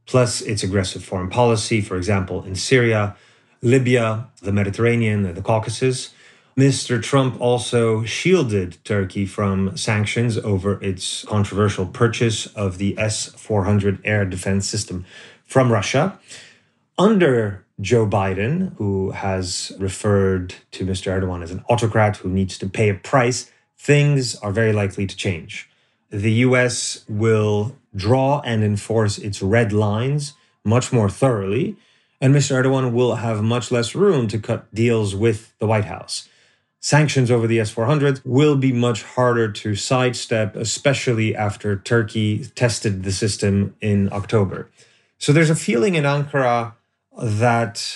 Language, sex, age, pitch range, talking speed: English, male, 30-49, 100-125 Hz, 135 wpm